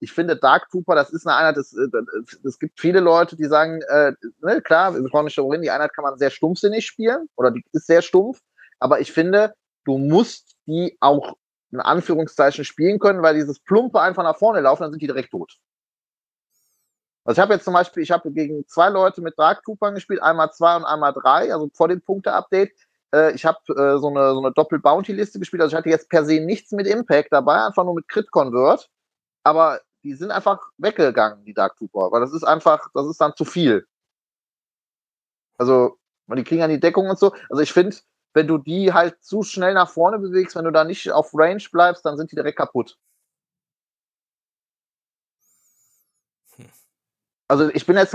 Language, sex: German, male